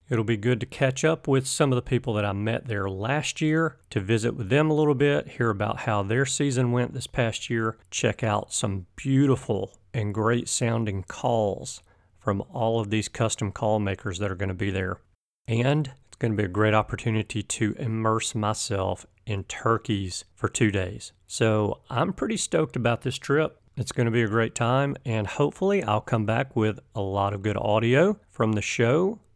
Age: 40-59